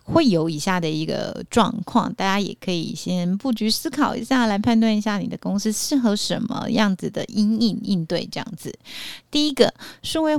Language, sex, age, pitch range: Chinese, female, 30-49, 175-235 Hz